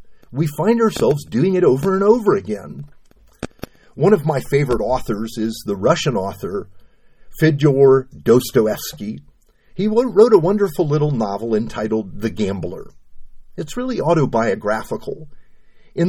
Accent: American